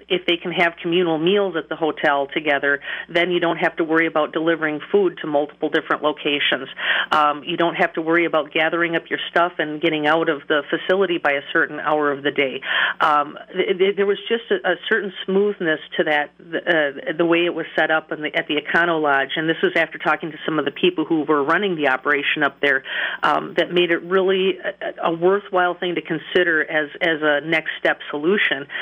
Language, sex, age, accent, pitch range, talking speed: English, female, 40-59, American, 155-180 Hz, 225 wpm